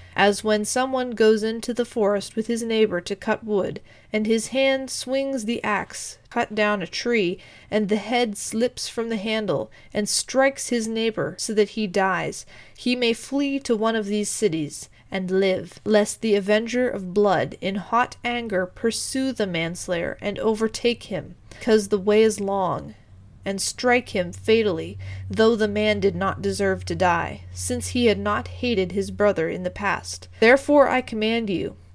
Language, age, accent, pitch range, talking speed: English, 30-49, American, 190-230 Hz, 175 wpm